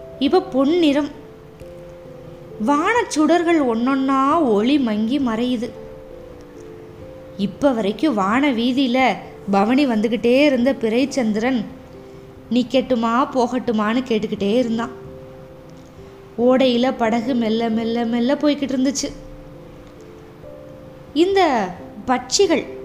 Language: Tamil